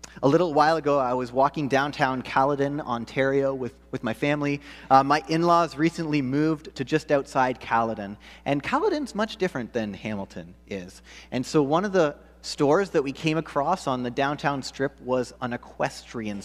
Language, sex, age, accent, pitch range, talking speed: English, male, 30-49, American, 125-160 Hz, 170 wpm